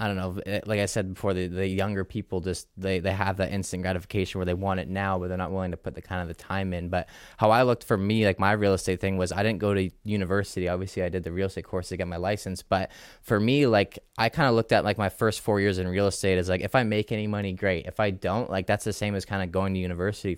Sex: male